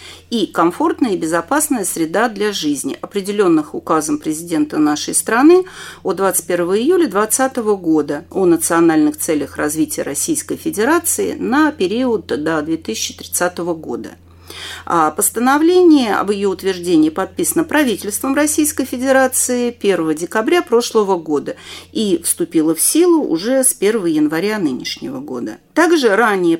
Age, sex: 40-59, female